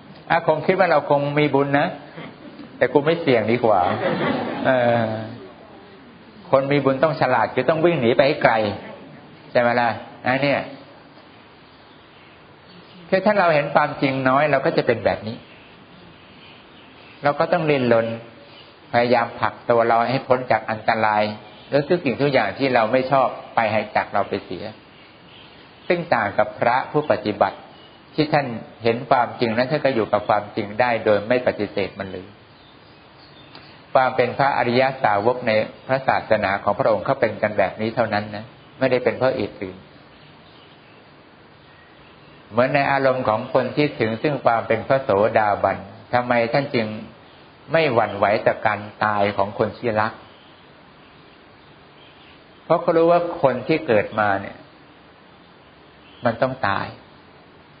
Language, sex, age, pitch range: English, male, 60-79, 110-145 Hz